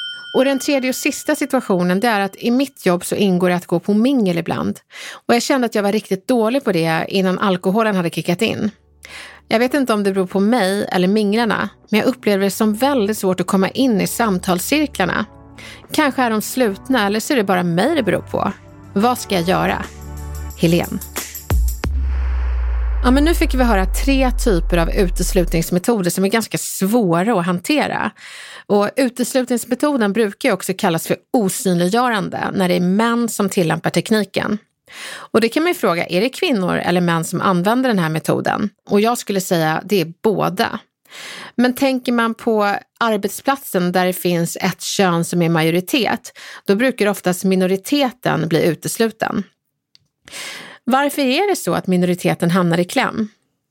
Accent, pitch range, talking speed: Swedish, 180-240 Hz, 175 wpm